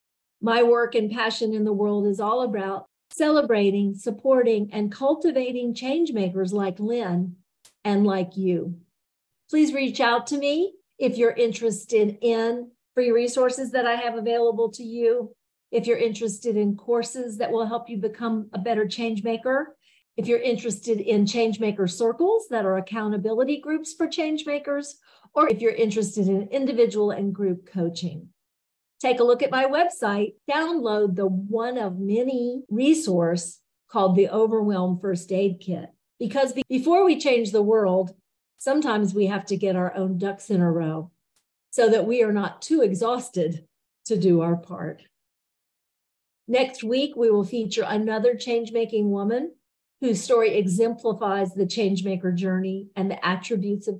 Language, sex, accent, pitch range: English, female, American, 200-245 Hz